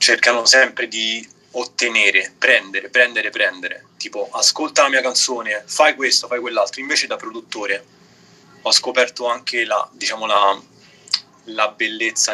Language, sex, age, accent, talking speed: Italian, male, 30-49, native, 130 wpm